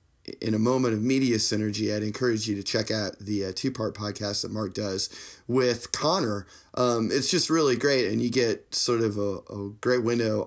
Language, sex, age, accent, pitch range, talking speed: English, male, 30-49, American, 100-120 Hz, 200 wpm